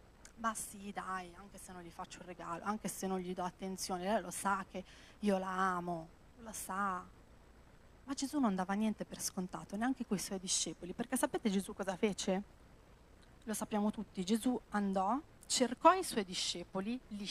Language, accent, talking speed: Italian, native, 180 wpm